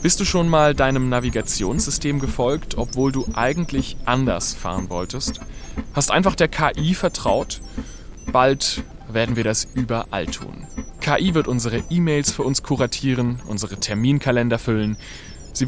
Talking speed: 135 wpm